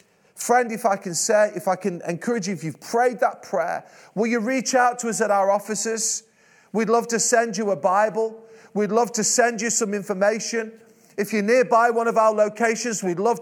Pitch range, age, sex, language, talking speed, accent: 190-235 Hz, 30-49, male, English, 210 wpm, British